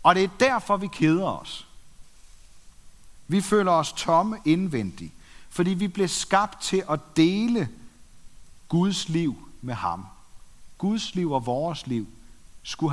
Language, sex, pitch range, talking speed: Danish, male, 125-185 Hz, 135 wpm